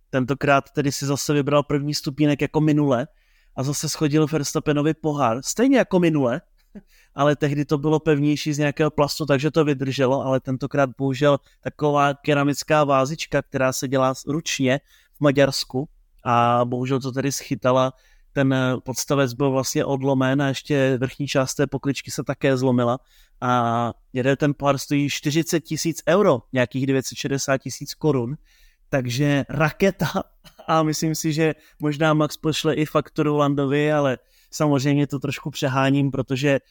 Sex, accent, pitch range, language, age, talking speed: male, native, 130-150 Hz, Czech, 30-49, 145 wpm